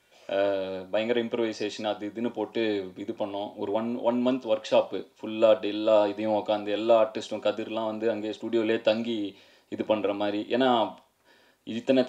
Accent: native